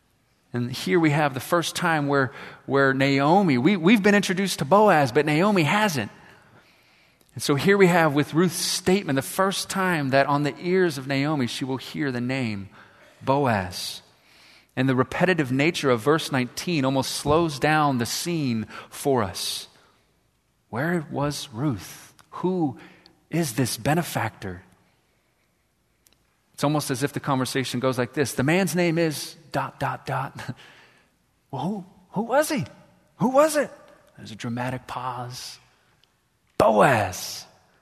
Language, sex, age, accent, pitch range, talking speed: English, male, 30-49, American, 130-175 Hz, 145 wpm